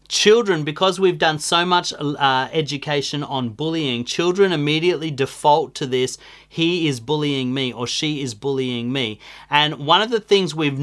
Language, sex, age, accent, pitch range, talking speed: English, male, 40-59, Australian, 130-160 Hz, 165 wpm